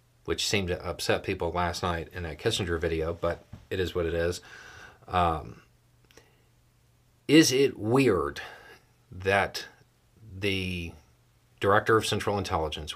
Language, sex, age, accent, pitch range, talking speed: English, male, 40-59, American, 90-120 Hz, 125 wpm